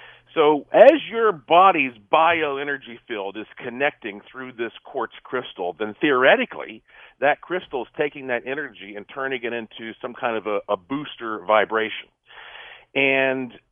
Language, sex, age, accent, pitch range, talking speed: English, male, 50-69, American, 110-145 Hz, 140 wpm